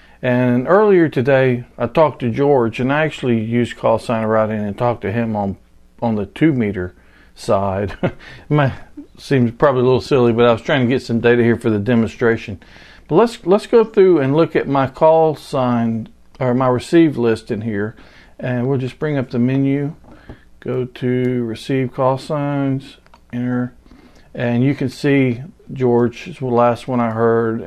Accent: American